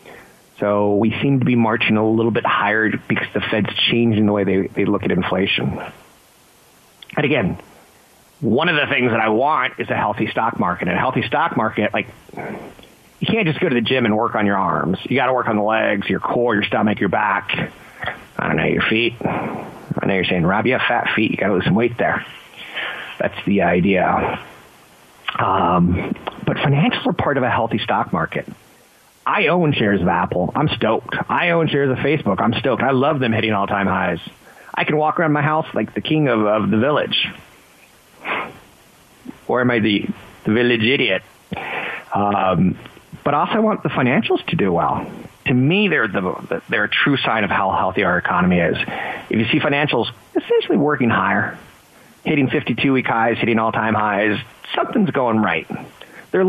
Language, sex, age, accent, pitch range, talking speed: English, male, 40-59, American, 105-150 Hz, 190 wpm